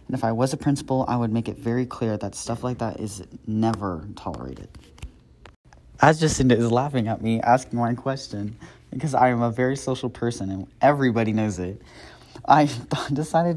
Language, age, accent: English, 30-49, American